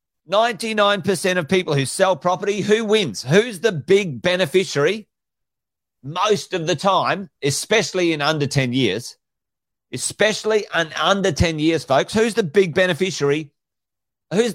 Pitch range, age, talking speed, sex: 140-195 Hz, 40-59, 130 wpm, male